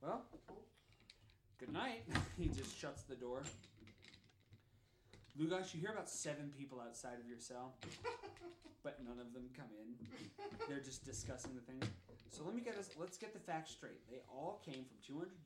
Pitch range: 115-160 Hz